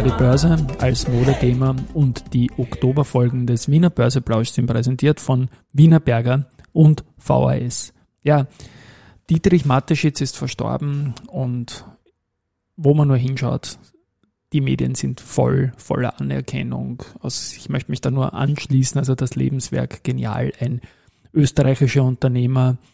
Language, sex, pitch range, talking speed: German, male, 120-140 Hz, 120 wpm